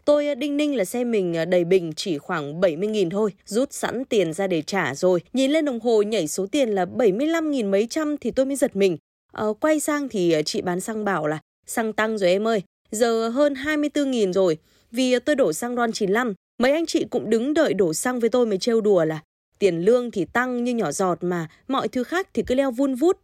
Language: Vietnamese